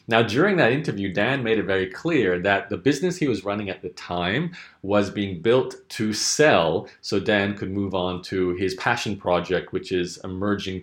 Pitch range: 95-110 Hz